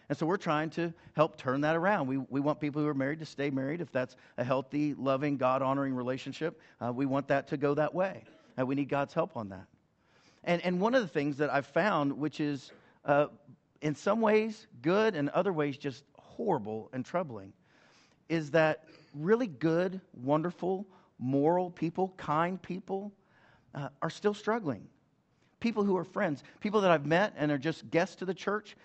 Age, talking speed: 50-69, 195 wpm